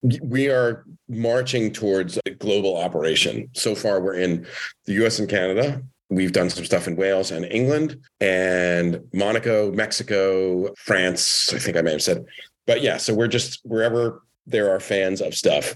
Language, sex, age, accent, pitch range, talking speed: English, male, 40-59, American, 90-120 Hz, 170 wpm